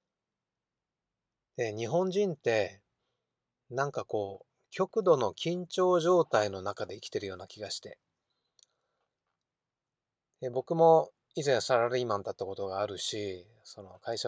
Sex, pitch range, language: male, 105-165 Hz, Japanese